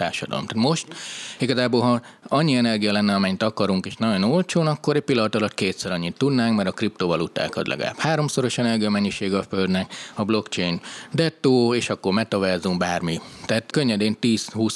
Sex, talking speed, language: male, 160 wpm, Hungarian